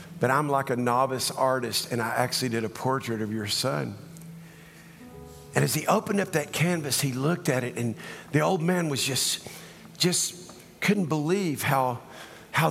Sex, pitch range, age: male, 145-175 Hz, 50-69